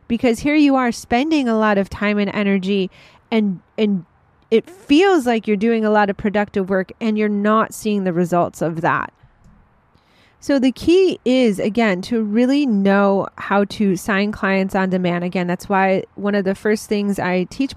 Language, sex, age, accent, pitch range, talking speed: English, female, 30-49, American, 195-230 Hz, 185 wpm